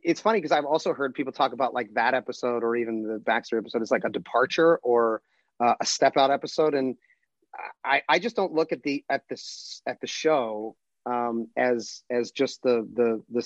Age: 30-49